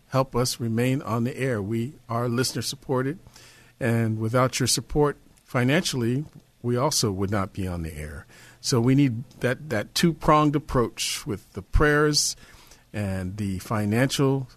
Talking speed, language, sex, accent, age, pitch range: 150 wpm, English, male, American, 50-69, 110-135 Hz